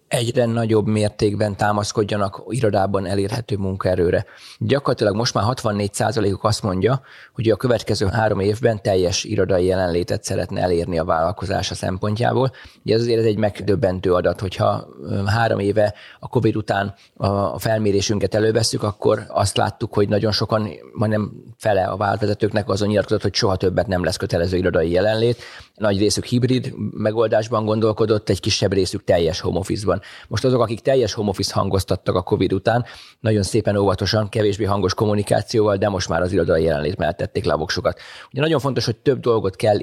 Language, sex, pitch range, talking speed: Hungarian, male, 95-110 Hz, 155 wpm